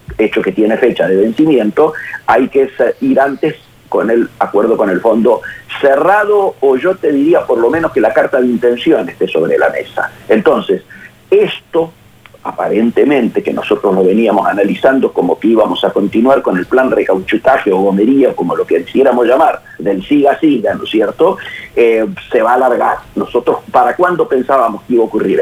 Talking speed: 180 wpm